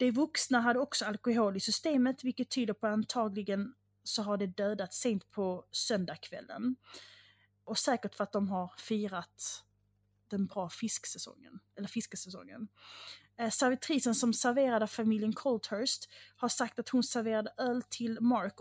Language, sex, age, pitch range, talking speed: English, female, 30-49, 195-235 Hz, 140 wpm